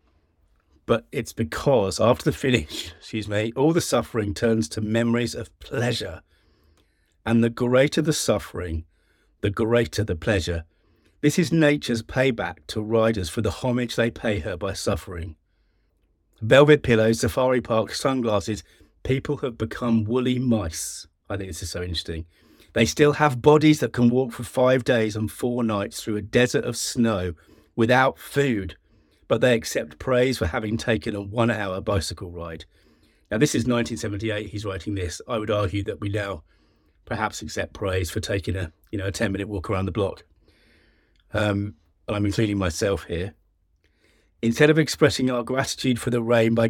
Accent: British